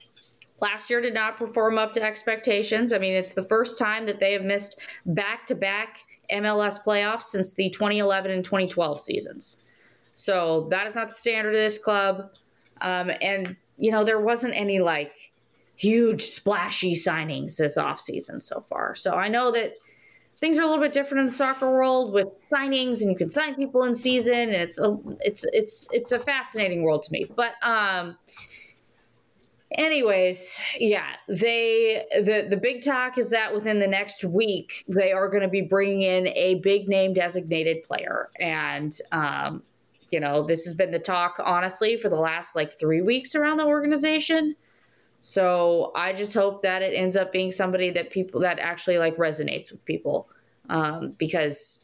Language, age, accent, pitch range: English, 20-39, American, 180-225 Hz